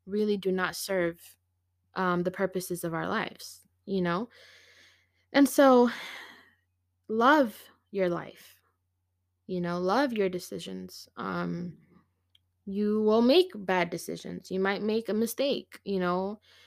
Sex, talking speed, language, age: female, 125 wpm, English, 20-39